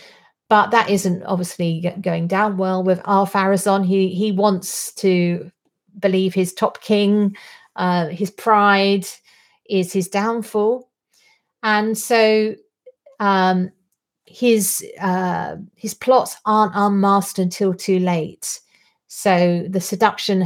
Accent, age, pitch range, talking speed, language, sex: British, 40-59, 175-205 Hz, 110 wpm, English, female